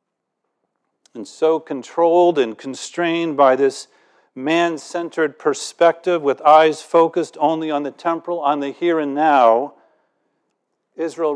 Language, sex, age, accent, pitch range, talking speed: English, male, 50-69, American, 140-170 Hz, 115 wpm